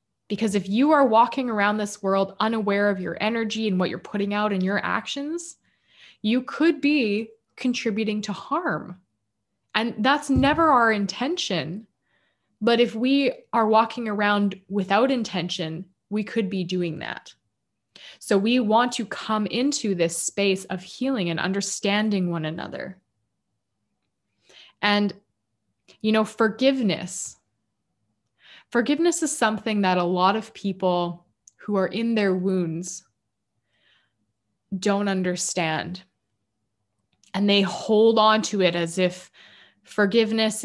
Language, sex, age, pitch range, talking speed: English, female, 20-39, 180-225 Hz, 125 wpm